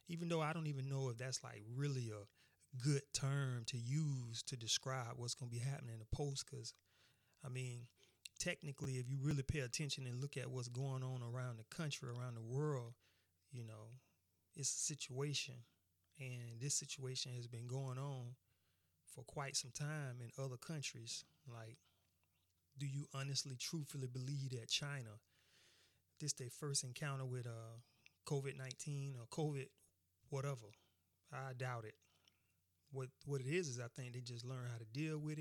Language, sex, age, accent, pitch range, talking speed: English, male, 30-49, American, 110-140 Hz, 170 wpm